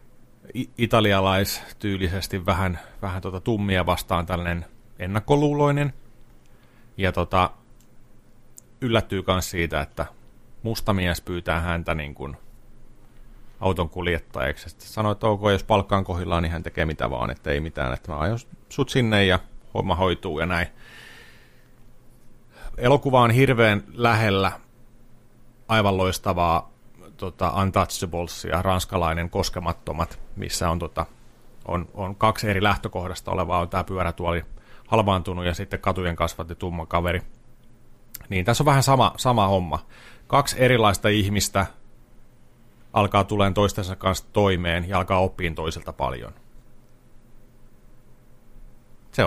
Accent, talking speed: native, 120 wpm